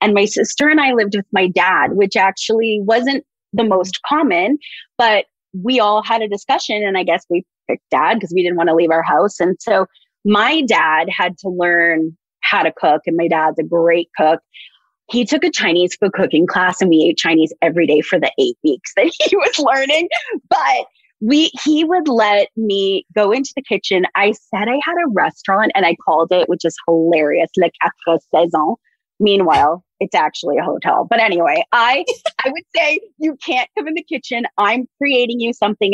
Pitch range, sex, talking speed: 180-265 Hz, female, 200 wpm